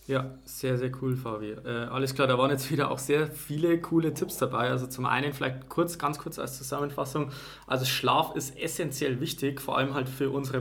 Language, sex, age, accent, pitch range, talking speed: German, male, 20-39, German, 130-145 Hz, 210 wpm